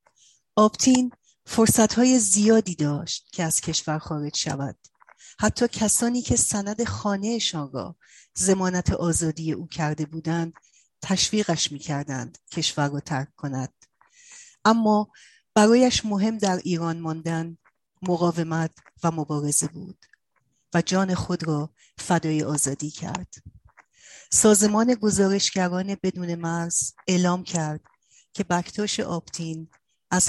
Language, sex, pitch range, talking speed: Persian, female, 160-190 Hz, 110 wpm